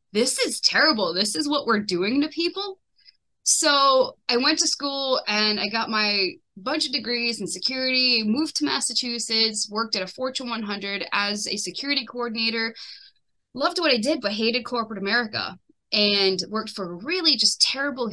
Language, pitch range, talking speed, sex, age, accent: English, 195-255 Hz, 170 wpm, female, 20-39, American